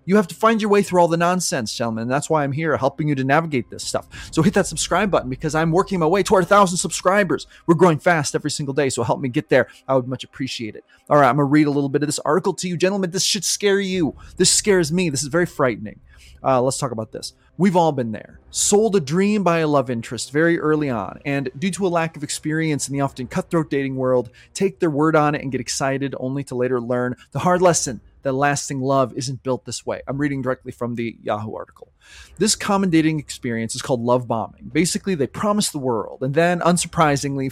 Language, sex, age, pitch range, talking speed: English, male, 20-39, 130-175 Hz, 245 wpm